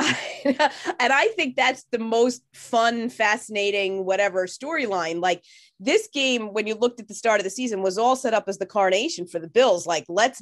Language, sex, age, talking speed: English, female, 30-49, 195 wpm